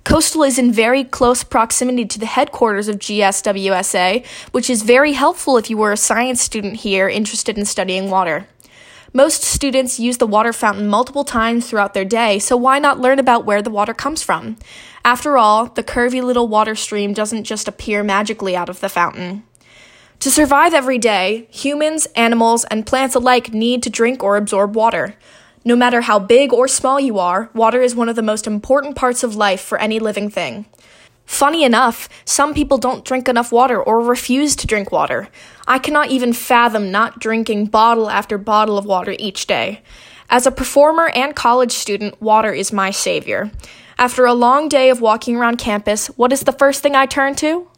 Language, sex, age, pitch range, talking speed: English, female, 10-29, 215-270 Hz, 190 wpm